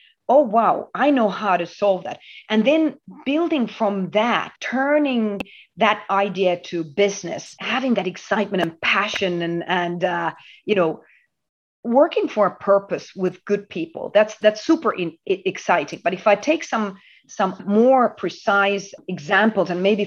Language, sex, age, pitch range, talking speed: English, female, 40-59, 175-220 Hz, 155 wpm